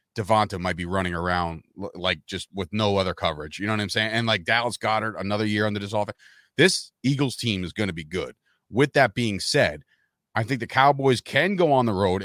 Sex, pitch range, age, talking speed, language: male, 100-130 Hz, 30-49, 225 wpm, English